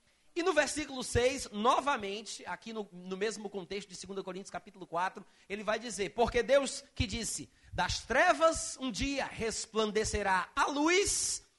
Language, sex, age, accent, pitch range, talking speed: Portuguese, male, 30-49, Brazilian, 195-280 Hz, 150 wpm